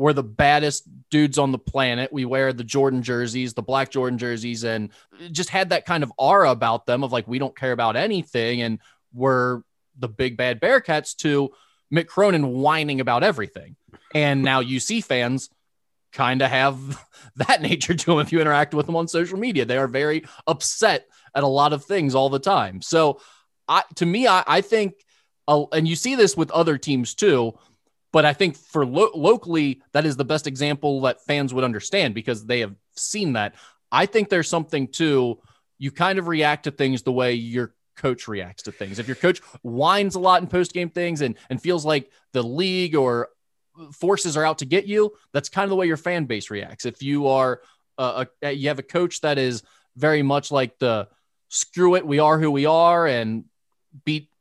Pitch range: 125-165 Hz